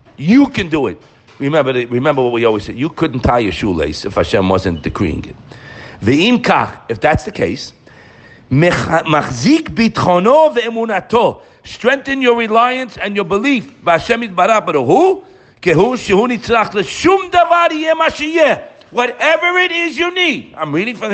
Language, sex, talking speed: English, male, 150 wpm